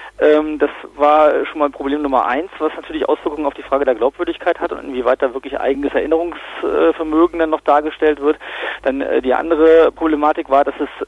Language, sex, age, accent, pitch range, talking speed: German, male, 40-59, German, 145-170 Hz, 180 wpm